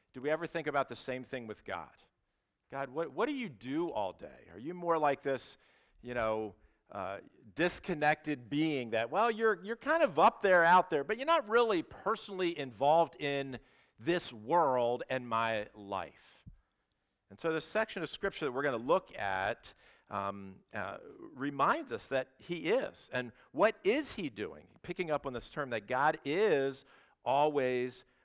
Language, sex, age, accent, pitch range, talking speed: English, male, 50-69, American, 110-160 Hz, 175 wpm